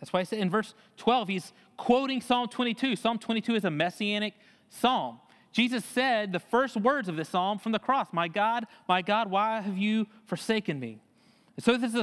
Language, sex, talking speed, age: English, male, 210 wpm, 30-49